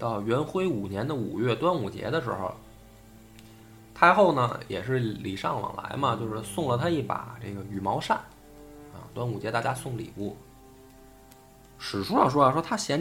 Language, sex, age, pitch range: Chinese, male, 20-39, 100-140 Hz